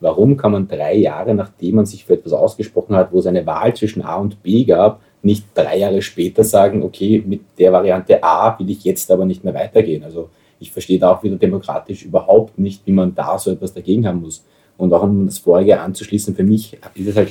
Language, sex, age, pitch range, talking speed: German, male, 30-49, 95-110 Hz, 230 wpm